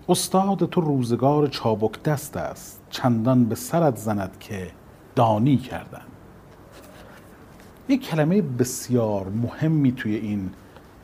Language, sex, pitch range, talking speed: Persian, male, 105-145 Hz, 105 wpm